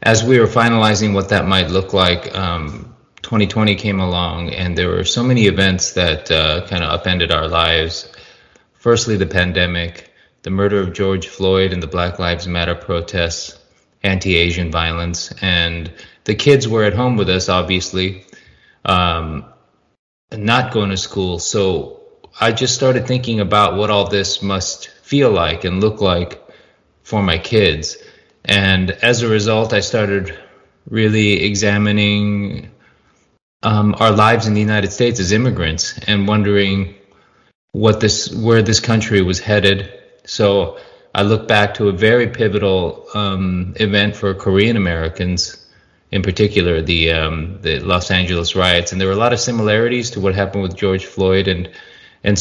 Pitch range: 90-105 Hz